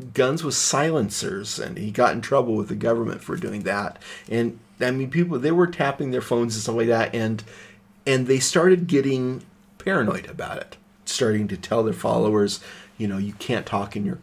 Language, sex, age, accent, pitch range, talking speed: English, male, 30-49, American, 105-135 Hz, 200 wpm